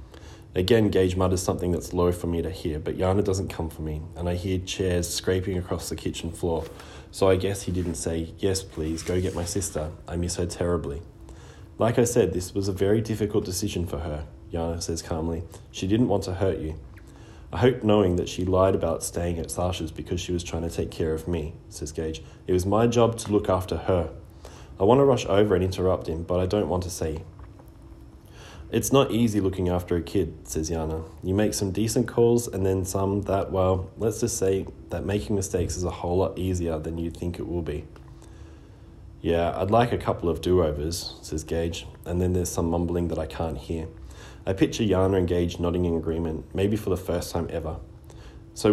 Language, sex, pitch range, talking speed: English, male, 80-95 Hz, 215 wpm